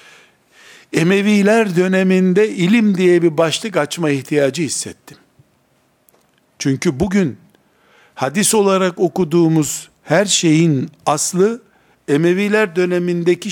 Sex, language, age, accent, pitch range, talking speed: male, Turkish, 60-79, native, 150-200 Hz, 85 wpm